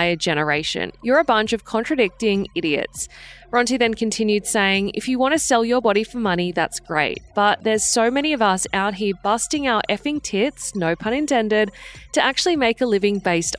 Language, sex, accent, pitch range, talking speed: English, female, Australian, 185-245 Hz, 190 wpm